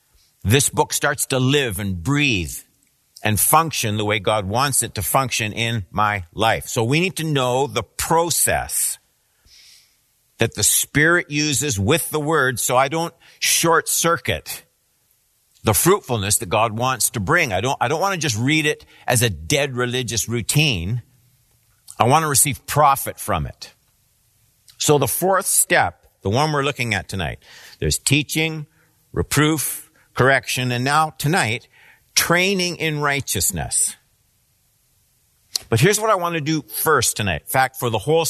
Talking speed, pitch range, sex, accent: 155 wpm, 110-150 Hz, male, American